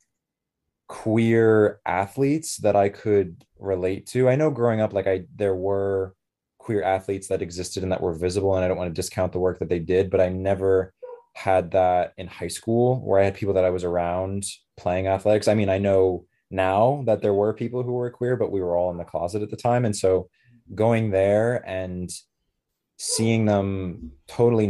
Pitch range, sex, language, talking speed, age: 95-105 Hz, male, English, 200 wpm, 20-39